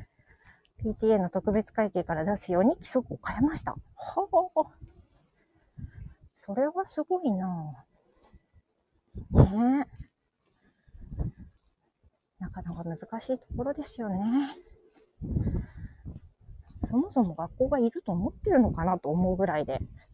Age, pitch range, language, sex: 40-59, 185-255 Hz, Japanese, female